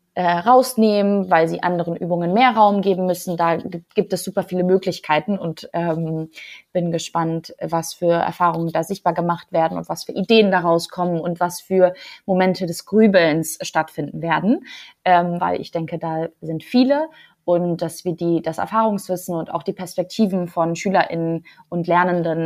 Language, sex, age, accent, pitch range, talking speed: German, female, 20-39, German, 165-190 Hz, 165 wpm